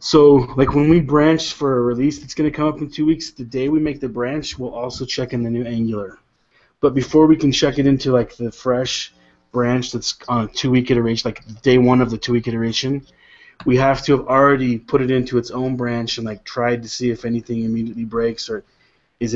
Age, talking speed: 20-39, 225 wpm